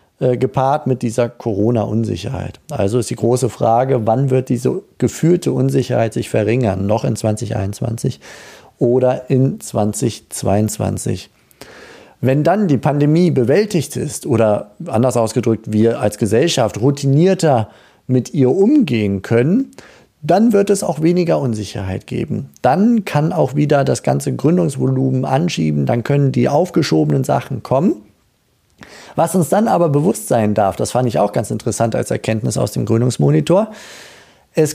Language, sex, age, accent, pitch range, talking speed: German, male, 40-59, German, 110-155 Hz, 135 wpm